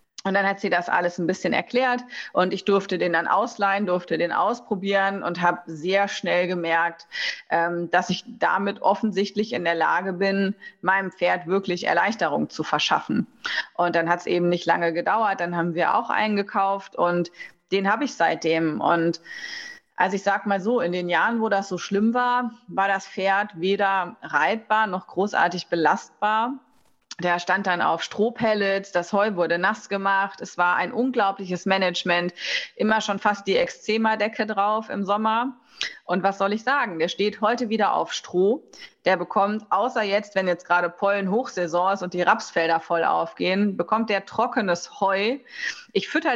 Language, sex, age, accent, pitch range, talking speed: German, female, 30-49, German, 180-220 Hz, 170 wpm